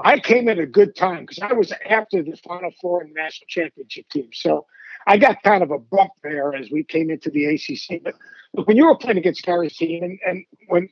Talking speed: 240 wpm